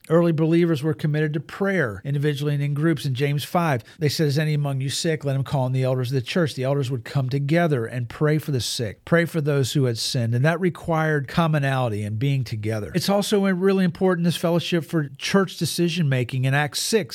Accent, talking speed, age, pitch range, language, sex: American, 225 wpm, 50-69, 135-170 Hz, English, male